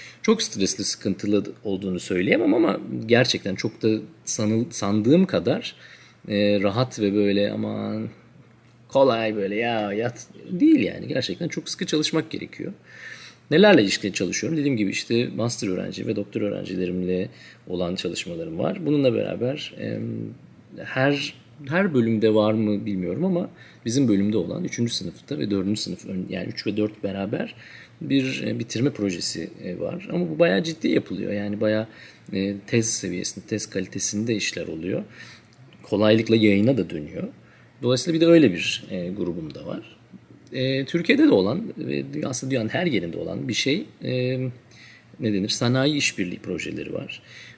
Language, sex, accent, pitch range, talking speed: Turkish, male, native, 105-140 Hz, 140 wpm